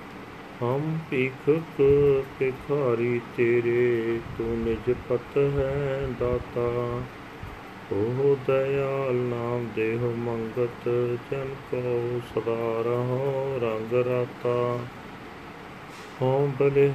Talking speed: 70 wpm